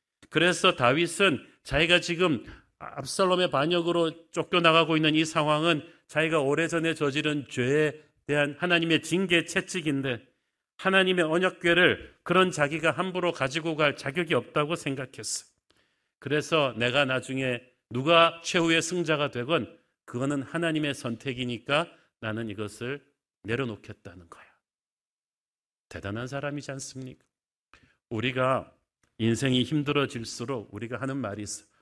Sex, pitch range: male, 125-165 Hz